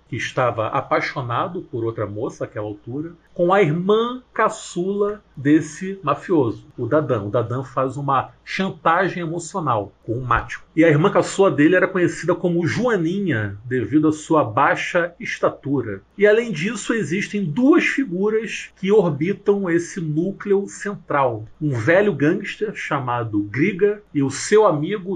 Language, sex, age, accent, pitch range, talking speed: Portuguese, male, 40-59, Brazilian, 130-190 Hz, 140 wpm